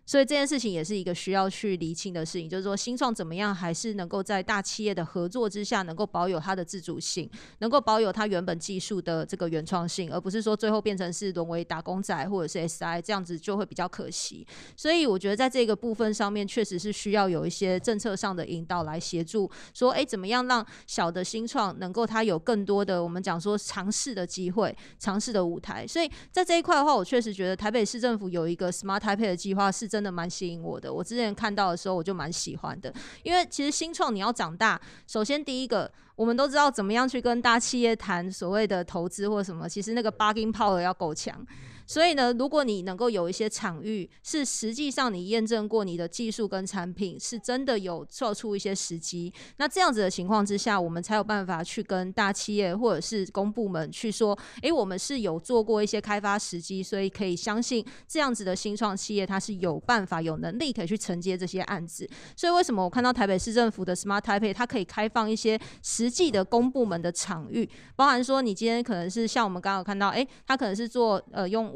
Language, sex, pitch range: Chinese, female, 185-230 Hz